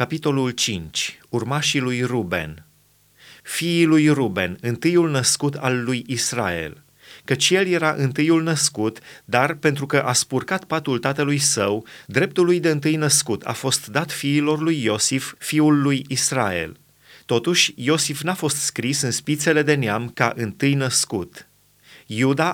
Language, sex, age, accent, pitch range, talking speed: Romanian, male, 30-49, native, 120-150 Hz, 140 wpm